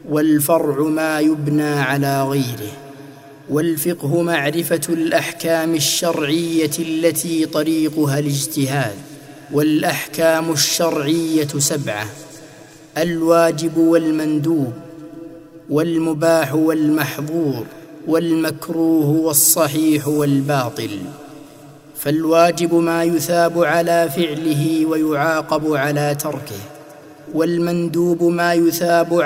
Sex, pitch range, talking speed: male, 150-165 Hz, 70 wpm